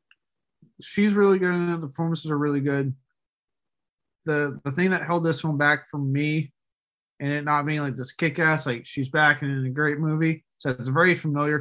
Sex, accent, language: male, American, English